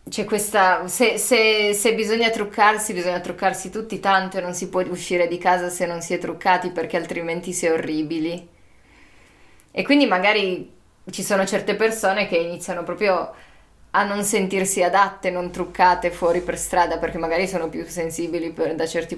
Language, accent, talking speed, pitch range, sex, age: Italian, native, 170 wpm, 170-200 Hz, female, 20-39